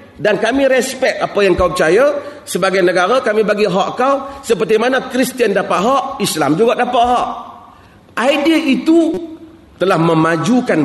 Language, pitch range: Malay, 185-265 Hz